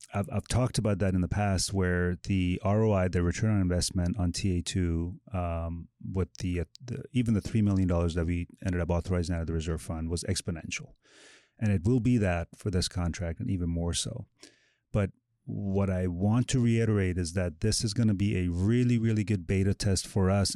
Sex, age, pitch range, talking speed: male, 30-49, 90-110 Hz, 205 wpm